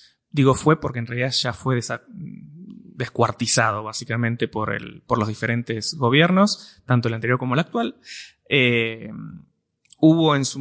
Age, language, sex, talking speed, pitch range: 20-39, Spanish, male, 140 wpm, 115-135 Hz